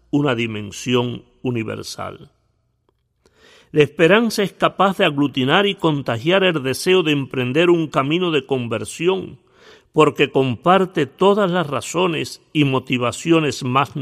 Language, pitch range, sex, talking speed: Spanish, 120-165 Hz, male, 115 wpm